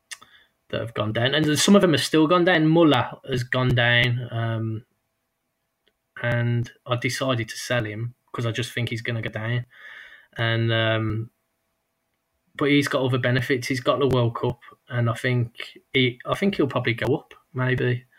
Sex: male